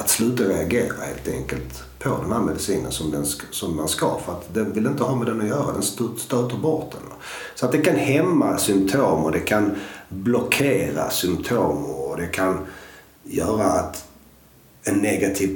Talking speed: 175 wpm